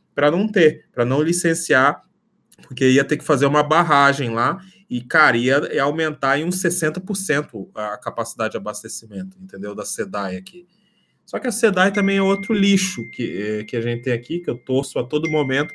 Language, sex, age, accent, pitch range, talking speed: Portuguese, male, 20-39, Brazilian, 115-165 Hz, 195 wpm